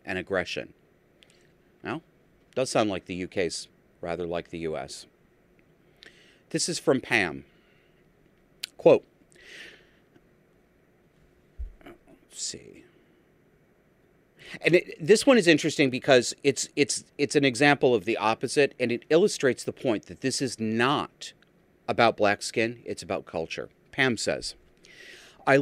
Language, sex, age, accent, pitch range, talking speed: English, male, 40-59, American, 105-150 Hz, 125 wpm